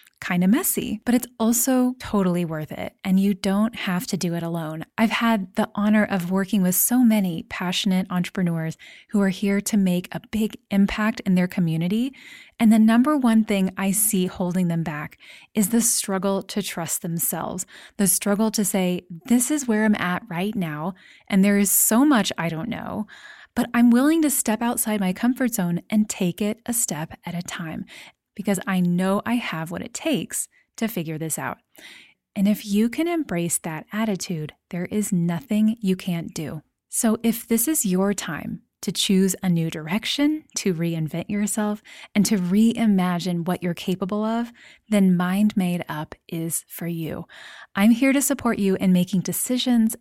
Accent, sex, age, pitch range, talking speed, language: American, female, 20-39, 180-225 Hz, 180 wpm, English